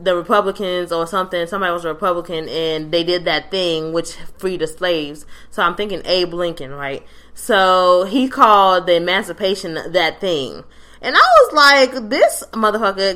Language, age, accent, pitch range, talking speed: English, 20-39, American, 165-195 Hz, 165 wpm